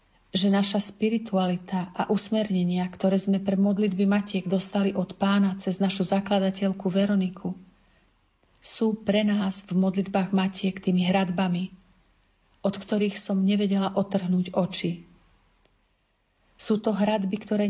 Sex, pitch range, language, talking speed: female, 185-205 Hz, Slovak, 120 wpm